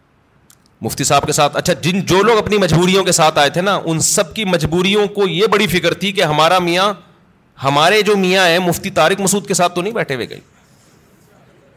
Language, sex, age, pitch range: Urdu, male, 40-59, 140-175 Hz